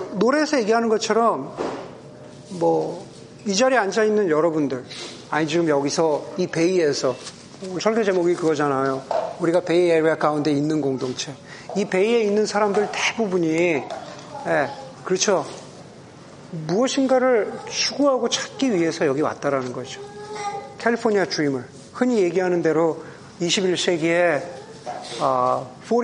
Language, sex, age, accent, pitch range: Korean, male, 40-59, native, 160-235 Hz